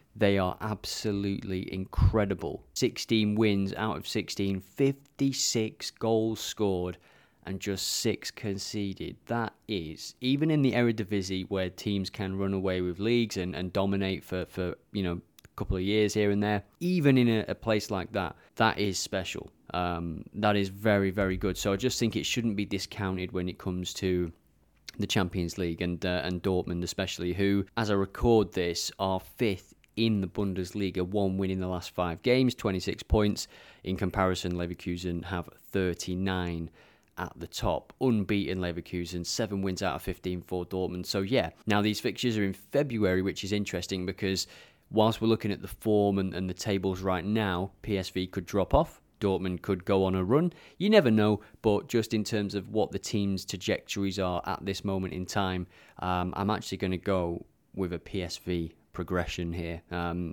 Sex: male